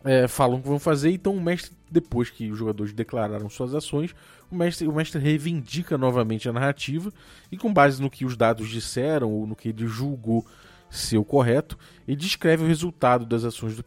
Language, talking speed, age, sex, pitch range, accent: Portuguese, 205 wpm, 20-39, male, 115-160 Hz, Brazilian